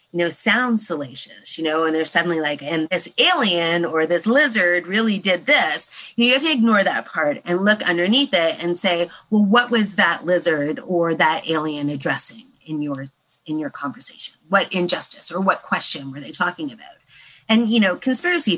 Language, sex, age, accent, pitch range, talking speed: English, female, 30-49, American, 170-225 Hz, 185 wpm